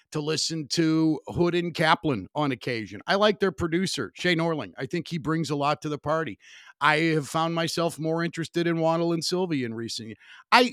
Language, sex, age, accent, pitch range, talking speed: English, male, 50-69, American, 135-190 Hz, 205 wpm